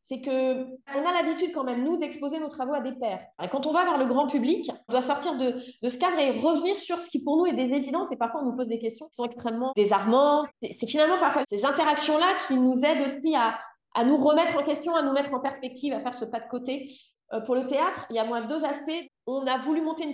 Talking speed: 270 wpm